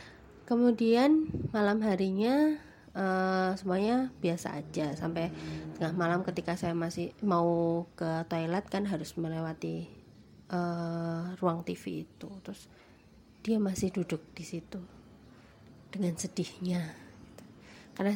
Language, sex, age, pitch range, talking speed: Indonesian, female, 20-39, 165-195 Hz, 105 wpm